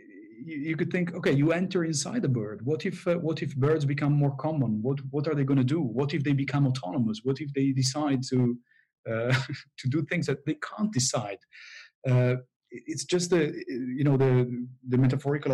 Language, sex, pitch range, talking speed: English, male, 120-145 Hz, 200 wpm